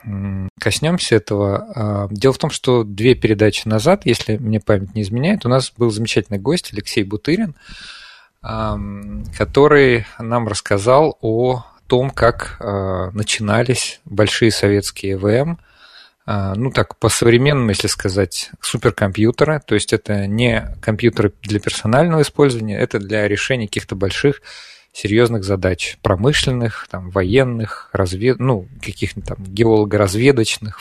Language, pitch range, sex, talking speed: Russian, 105-125 Hz, male, 115 wpm